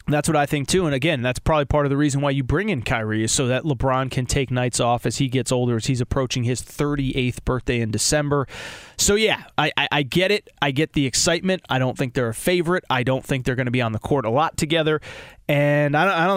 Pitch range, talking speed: 130-155 Hz, 265 wpm